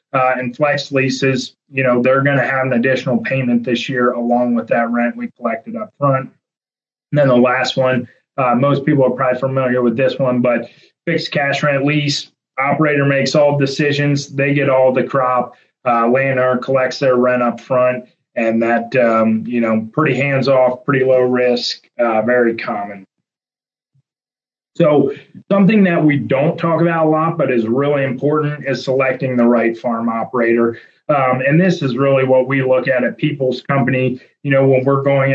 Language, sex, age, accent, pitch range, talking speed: English, male, 30-49, American, 125-140 Hz, 185 wpm